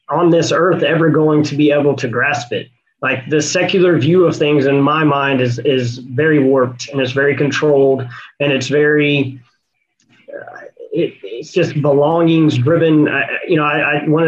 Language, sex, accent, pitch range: English, male, American, 135-160 Hz